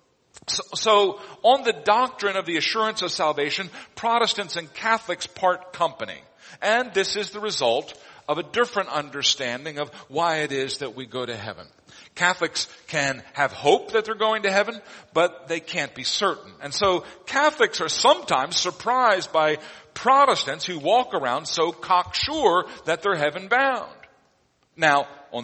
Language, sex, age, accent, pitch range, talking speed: English, male, 50-69, American, 150-205 Hz, 155 wpm